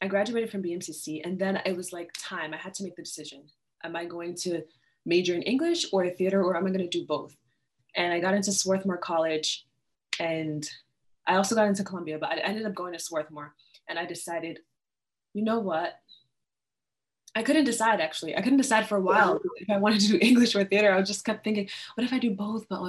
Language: English